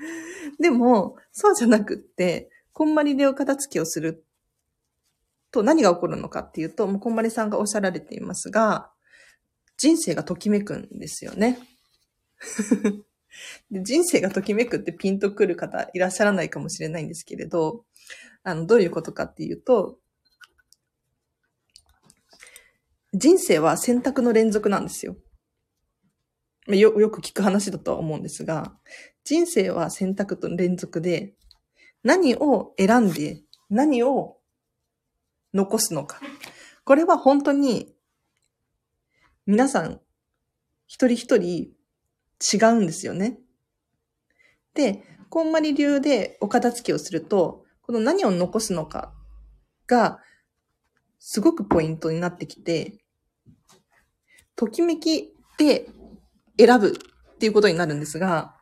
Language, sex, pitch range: Japanese, female, 180-275 Hz